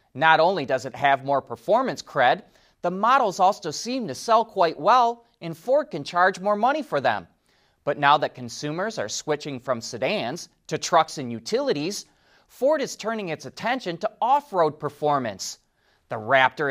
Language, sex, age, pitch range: English, male, 30-49, 135-205 Hz